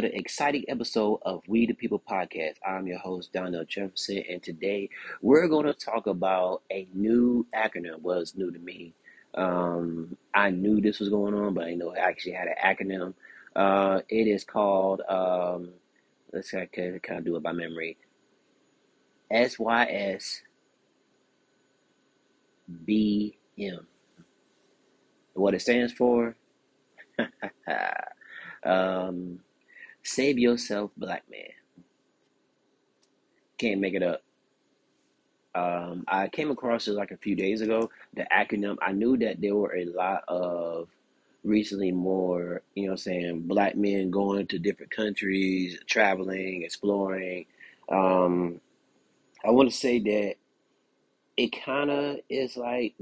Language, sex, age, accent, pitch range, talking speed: English, male, 30-49, American, 90-110 Hz, 135 wpm